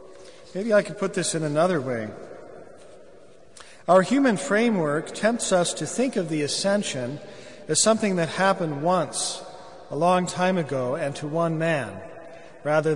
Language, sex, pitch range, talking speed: English, male, 155-200 Hz, 150 wpm